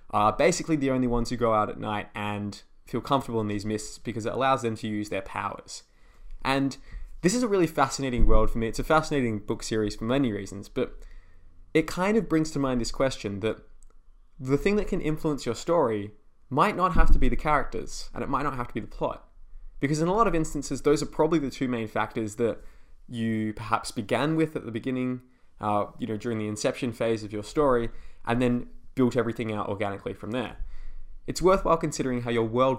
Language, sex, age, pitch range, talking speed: English, male, 20-39, 110-135 Hz, 220 wpm